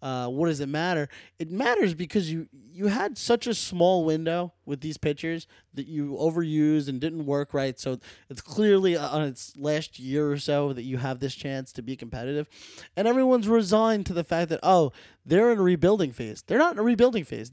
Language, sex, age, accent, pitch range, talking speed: English, male, 20-39, American, 135-185 Hz, 210 wpm